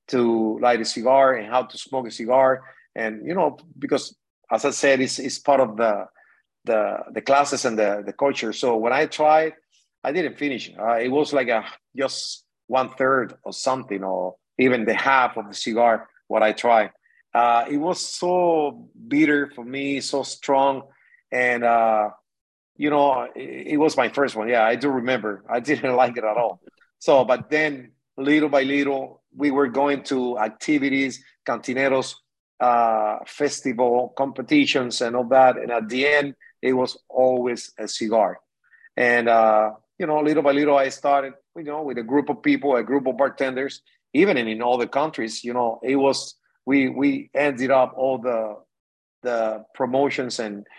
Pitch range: 115-140 Hz